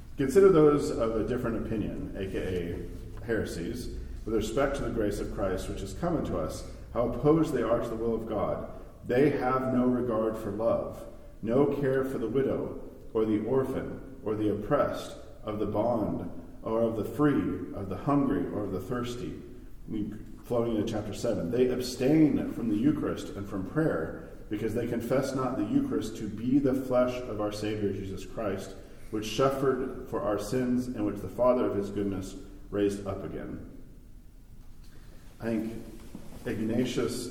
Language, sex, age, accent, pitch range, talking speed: English, male, 40-59, American, 100-125 Hz, 170 wpm